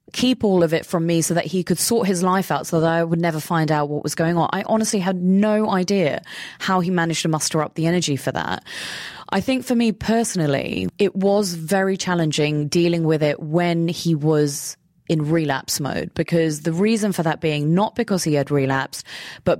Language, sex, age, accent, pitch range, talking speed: English, female, 20-39, British, 150-185 Hz, 215 wpm